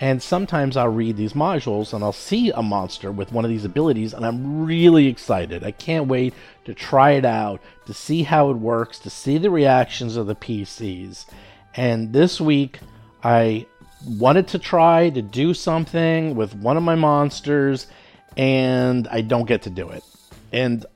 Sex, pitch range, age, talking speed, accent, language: male, 110-150 Hz, 40-59, 180 wpm, American, English